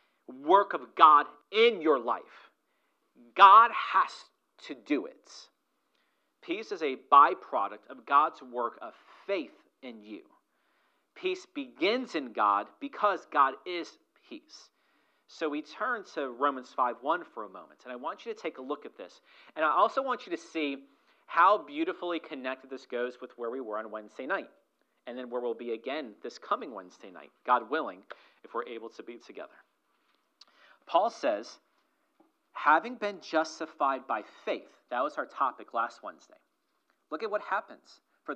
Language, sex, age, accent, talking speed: English, male, 40-59, American, 165 wpm